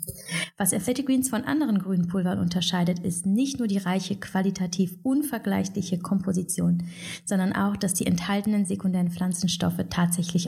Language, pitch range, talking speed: German, 175-200 Hz, 130 wpm